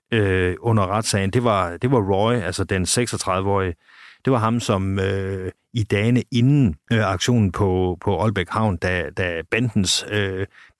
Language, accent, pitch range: Danish, native, 90-115 Hz